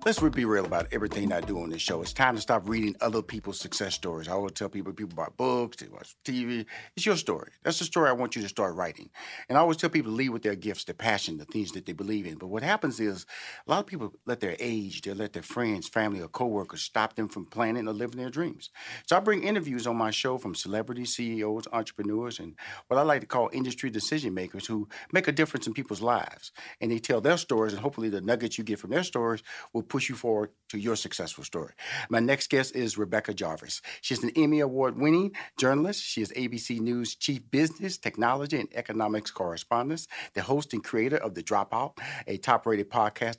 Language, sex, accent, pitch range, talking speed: English, male, American, 105-135 Hz, 230 wpm